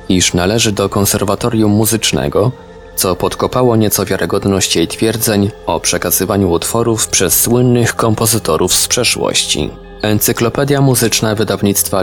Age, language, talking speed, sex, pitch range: 20-39, Polish, 110 wpm, male, 90-115 Hz